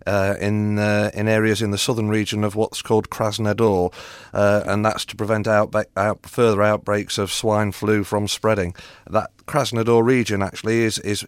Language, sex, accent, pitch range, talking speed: English, male, British, 105-115 Hz, 175 wpm